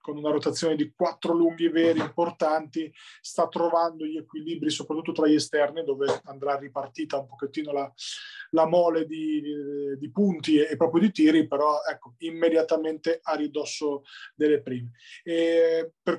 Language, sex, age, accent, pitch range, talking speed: Italian, male, 30-49, native, 145-170 Hz, 150 wpm